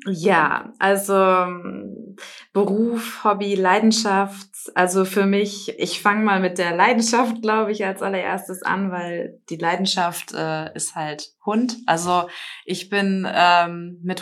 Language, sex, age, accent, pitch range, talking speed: German, female, 20-39, German, 185-225 Hz, 130 wpm